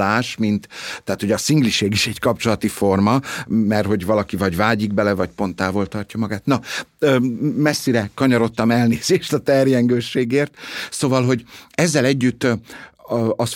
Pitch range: 95-130 Hz